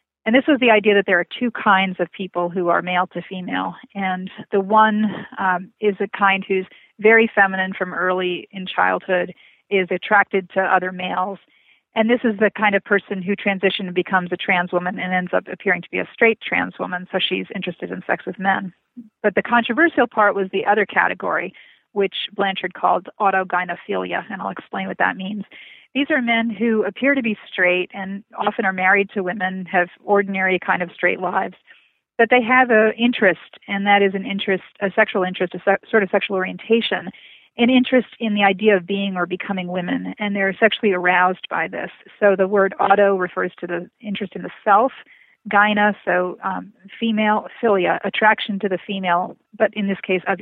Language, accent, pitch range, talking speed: English, American, 185-215 Hz, 195 wpm